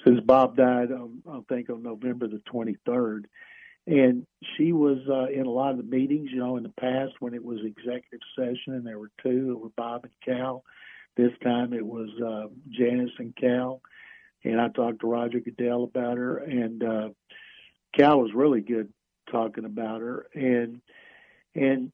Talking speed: 180 wpm